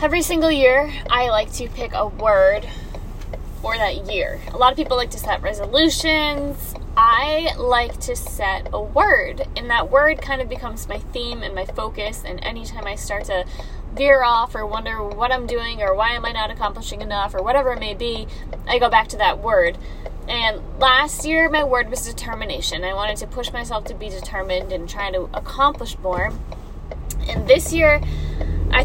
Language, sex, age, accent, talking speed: English, female, 10-29, American, 190 wpm